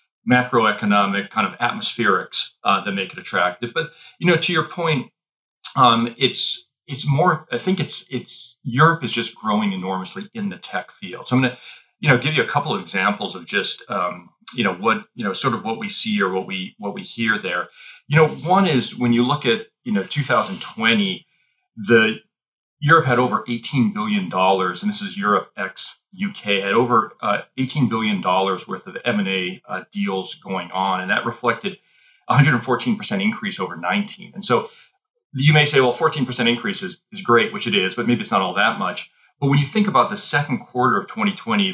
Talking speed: 195 wpm